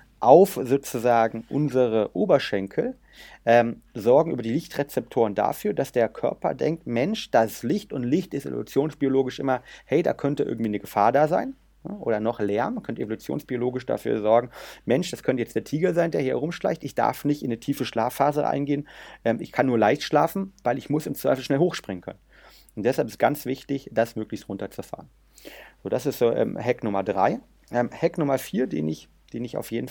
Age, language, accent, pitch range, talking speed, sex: 30-49, German, German, 115-150 Hz, 195 wpm, male